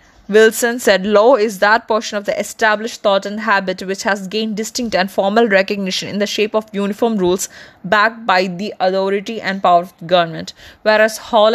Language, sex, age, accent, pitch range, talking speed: Malayalam, female, 20-39, native, 190-240 Hz, 185 wpm